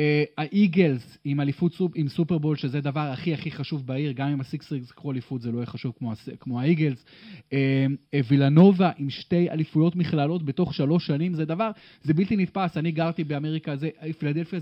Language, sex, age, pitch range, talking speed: Hebrew, male, 30-49, 145-180 Hz, 165 wpm